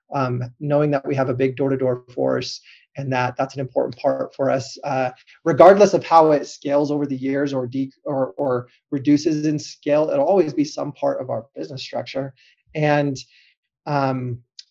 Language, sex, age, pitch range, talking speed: English, male, 30-49, 130-150 Hz, 180 wpm